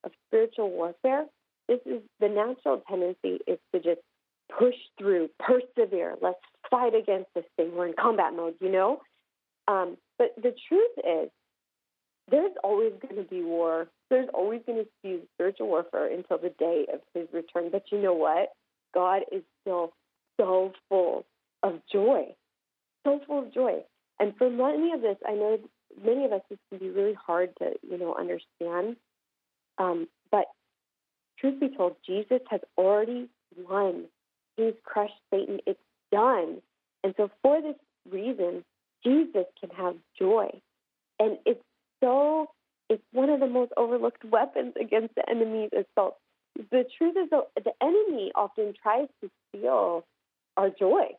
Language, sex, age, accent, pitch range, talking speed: English, female, 40-59, American, 190-280 Hz, 155 wpm